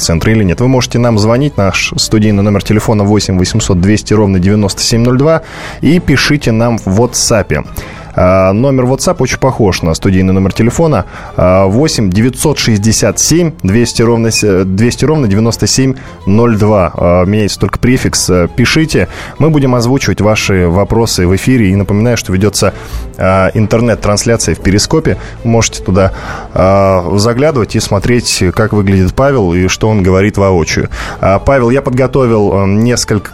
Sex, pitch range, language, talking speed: male, 100-130 Hz, Russian, 120 wpm